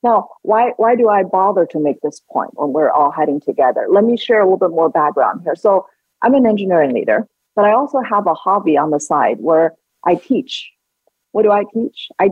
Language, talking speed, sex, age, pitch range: English, 225 wpm, female, 40-59, 160-215 Hz